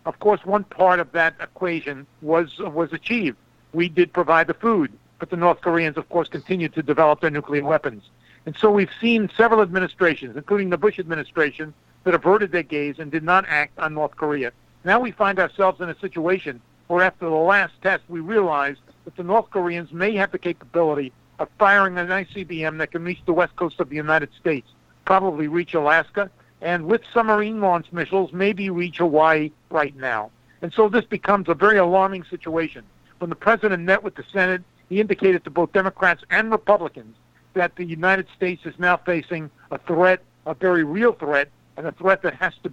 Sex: male